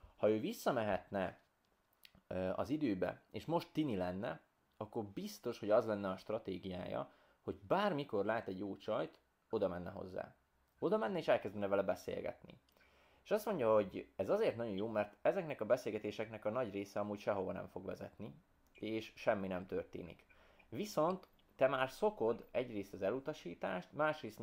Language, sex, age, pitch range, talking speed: Hungarian, male, 20-39, 95-125 Hz, 155 wpm